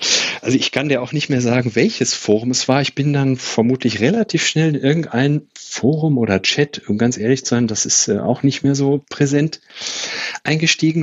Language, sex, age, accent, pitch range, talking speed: German, male, 40-59, German, 110-145 Hz, 195 wpm